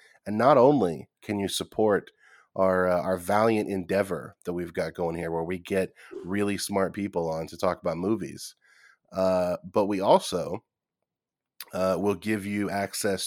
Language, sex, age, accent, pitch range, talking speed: English, male, 30-49, American, 90-105 Hz, 165 wpm